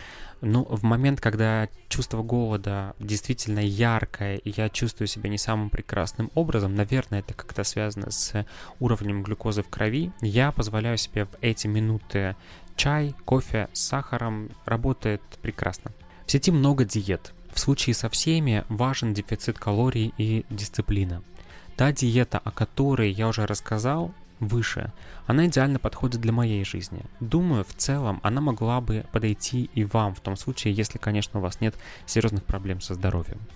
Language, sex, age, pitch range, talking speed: Russian, male, 20-39, 100-120 Hz, 150 wpm